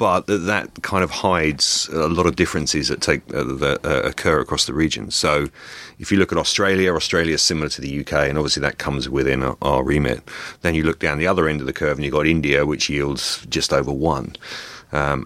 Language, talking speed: English, 230 wpm